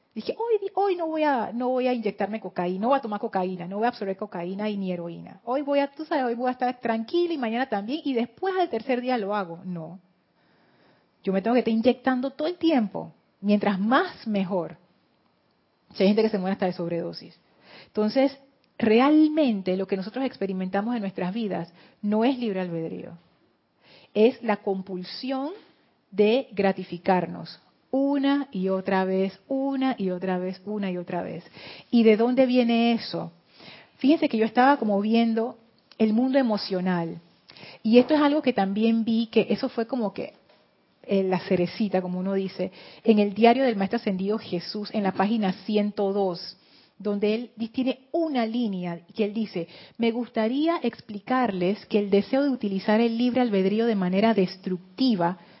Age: 30-49